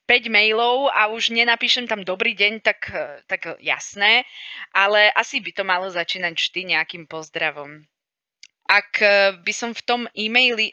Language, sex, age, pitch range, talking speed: Slovak, female, 20-39, 170-215 Hz, 140 wpm